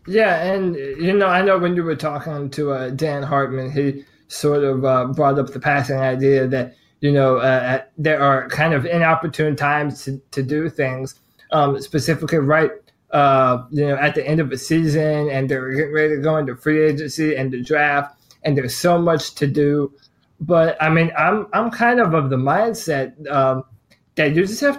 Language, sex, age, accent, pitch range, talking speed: English, male, 20-39, American, 140-165 Hz, 200 wpm